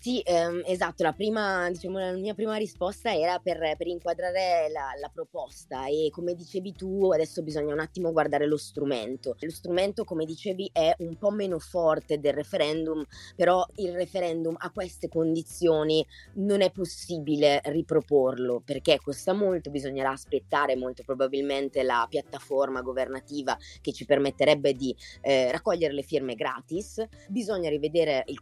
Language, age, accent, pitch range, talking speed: Italian, 20-39, native, 145-190 Hz, 150 wpm